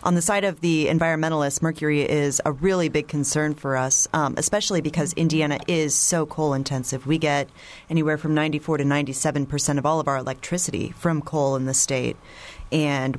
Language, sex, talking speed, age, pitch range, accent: English, female, 180 wpm, 30-49, 140-160 Hz, American